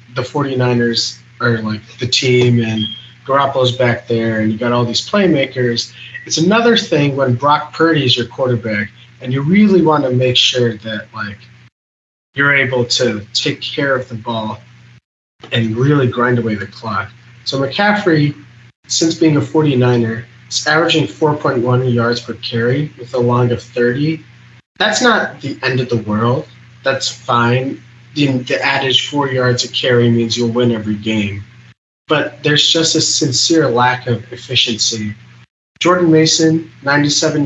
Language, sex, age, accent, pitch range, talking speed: English, male, 30-49, American, 120-140 Hz, 160 wpm